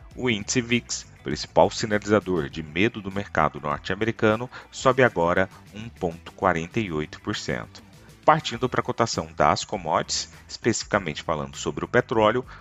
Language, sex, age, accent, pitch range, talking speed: Portuguese, male, 40-59, Brazilian, 80-115 Hz, 115 wpm